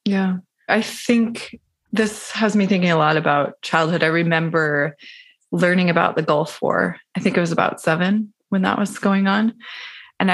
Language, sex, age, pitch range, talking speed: English, female, 20-39, 165-200 Hz, 175 wpm